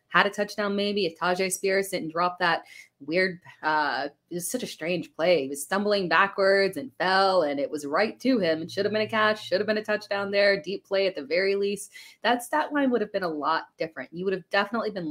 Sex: female